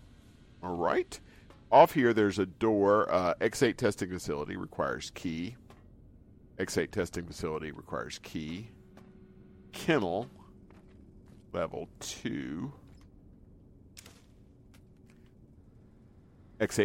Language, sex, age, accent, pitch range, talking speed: English, male, 50-69, American, 95-105 Hz, 80 wpm